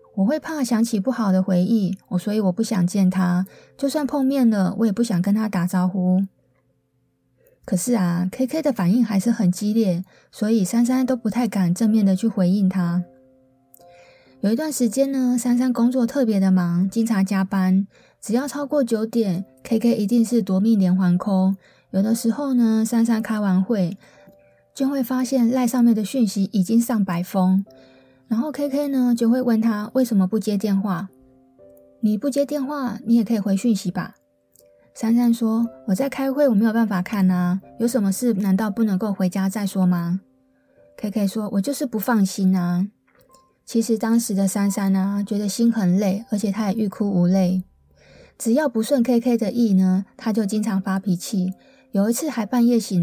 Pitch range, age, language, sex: 190-240 Hz, 20-39, Chinese, female